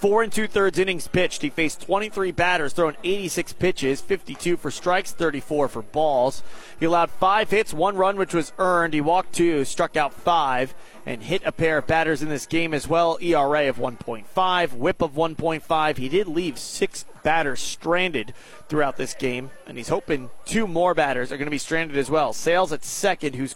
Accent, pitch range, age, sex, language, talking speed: American, 145-175 Hz, 30-49, male, English, 195 wpm